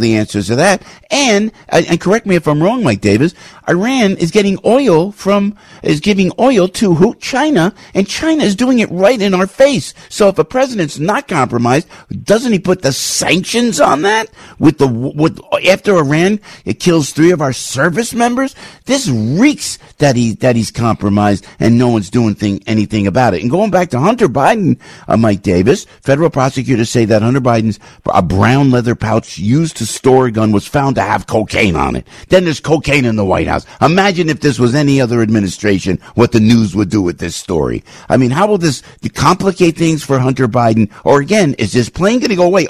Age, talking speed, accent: 50-69, 205 wpm, American